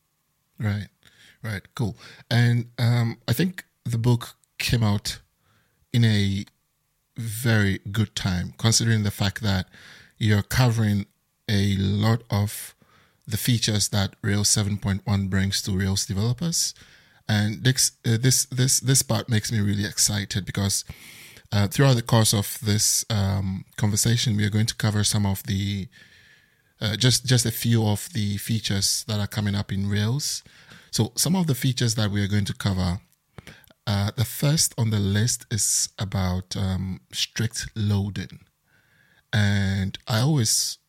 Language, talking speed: English, 145 wpm